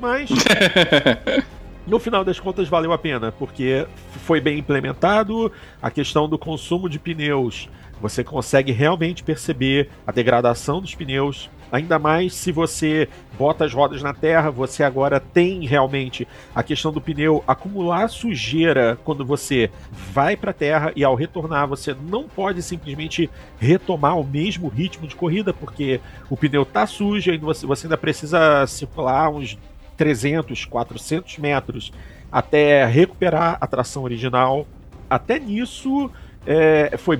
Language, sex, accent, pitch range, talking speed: Portuguese, male, Brazilian, 130-175 Hz, 135 wpm